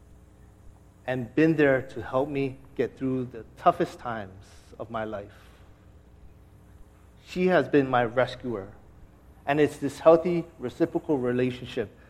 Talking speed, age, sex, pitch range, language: 125 wpm, 30-49, male, 100-145 Hz, English